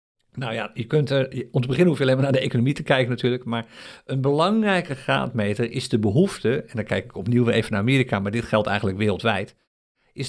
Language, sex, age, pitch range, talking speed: Dutch, male, 50-69, 115-150 Hz, 225 wpm